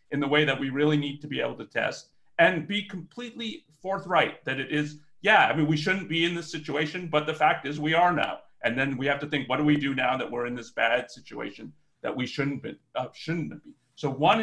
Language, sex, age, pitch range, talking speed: English, male, 40-59, 135-165 Hz, 255 wpm